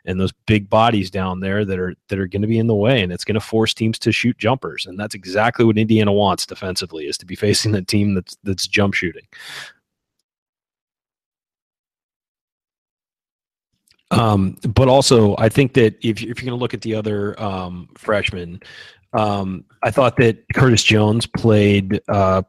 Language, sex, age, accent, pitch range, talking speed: English, male, 30-49, American, 100-120 Hz, 175 wpm